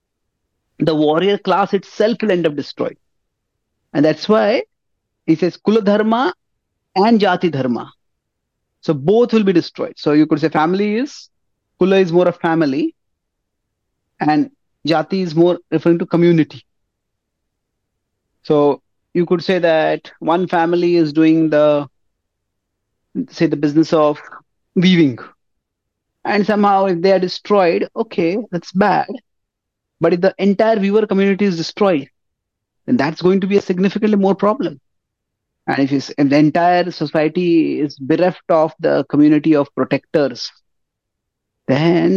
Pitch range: 150-195 Hz